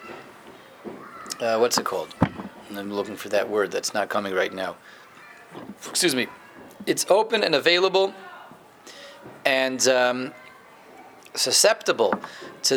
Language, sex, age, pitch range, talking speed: English, male, 30-49, 130-170 Hz, 115 wpm